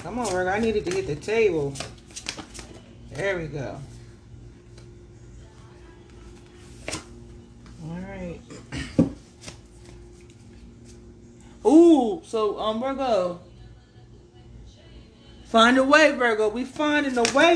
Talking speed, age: 90 wpm, 30-49